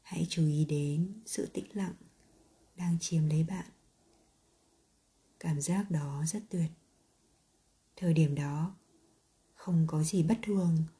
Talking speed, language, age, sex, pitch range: 130 wpm, Vietnamese, 20-39, female, 155-185 Hz